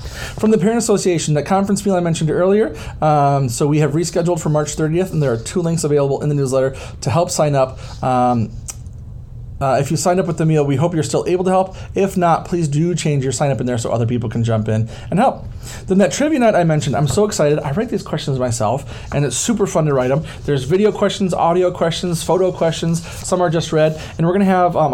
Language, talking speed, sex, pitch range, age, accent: English, 250 wpm, male, 130-180 Hz, 30-49, American